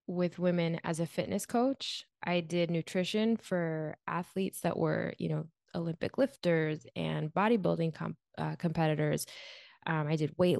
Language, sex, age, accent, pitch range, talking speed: English, female, 20-39, American, 150-180 Hz, 140 wpm